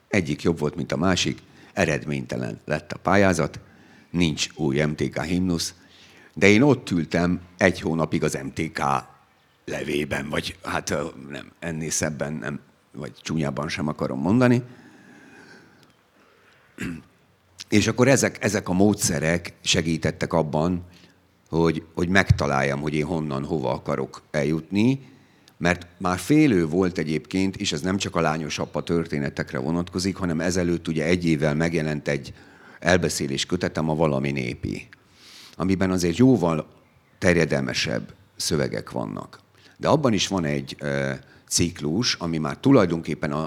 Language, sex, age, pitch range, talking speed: Hungarian, male, 50-69, 75-95 Hz, 130 wpm